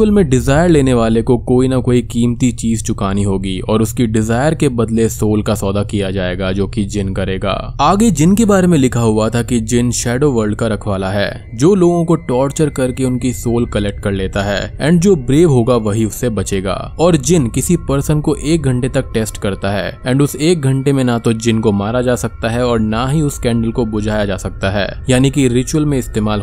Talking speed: 190 wpm